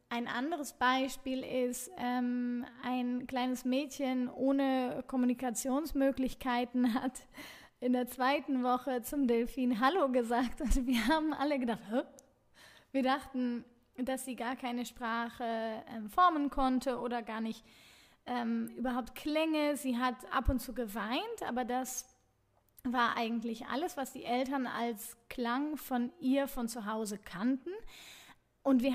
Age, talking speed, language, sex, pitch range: 20-39, 135 wpm, German, female, 245-275 Hz